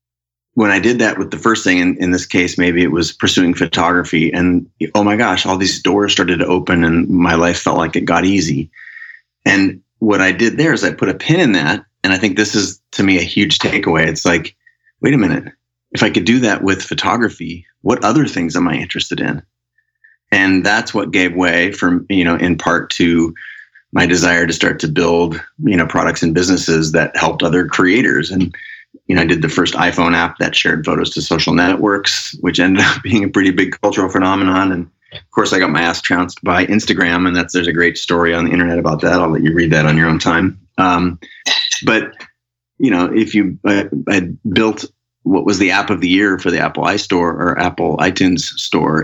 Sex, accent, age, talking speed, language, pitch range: male, American, 30-49, 220 wpm, English, 85-100 Hz